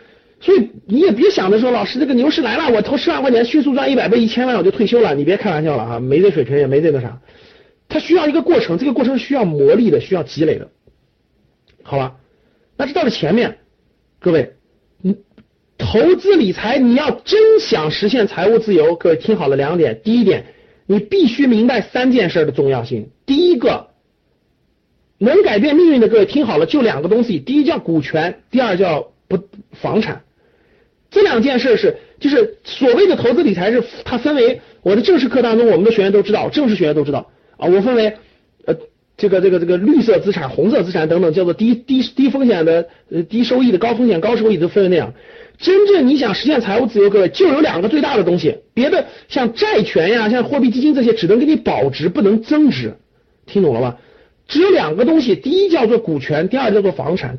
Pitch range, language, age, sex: 190-300 Hz, Chinese, 50-69, male